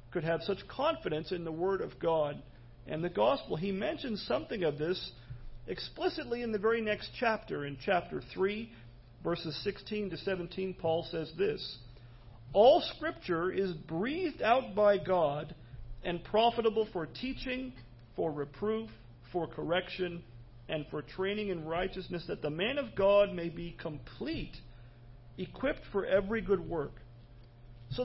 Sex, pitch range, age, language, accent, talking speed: male, 125-205 Hz, 40-59, English, American, 145 wpm